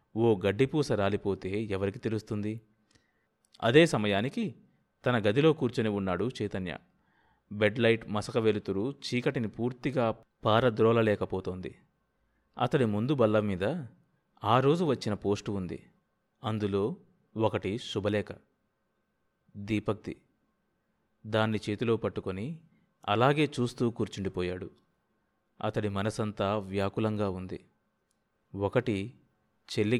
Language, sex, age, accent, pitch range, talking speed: Telugu, male, 30-49, native, 100-125 Hz, 85 wpm